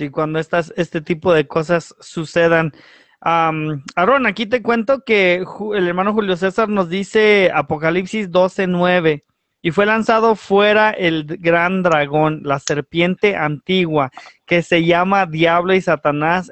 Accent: Mexican